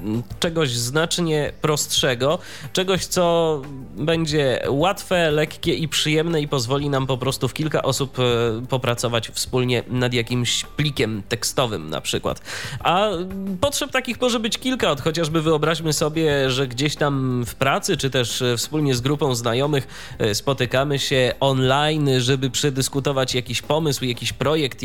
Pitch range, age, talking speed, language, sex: 125-160 Hz, 20-39, 135 wpm, Polish, male